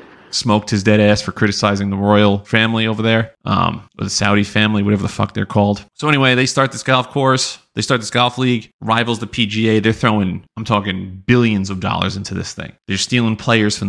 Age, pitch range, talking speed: 30-49, 100-115 Hz, 210 wpm